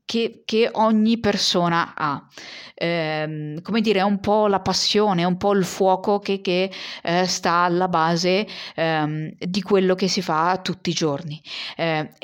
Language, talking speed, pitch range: Italian, 165 wpm, 170-210 Hz